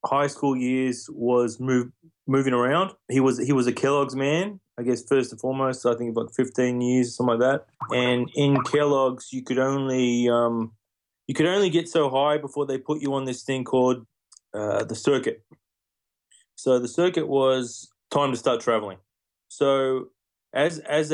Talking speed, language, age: 180 wpm, English, 20-39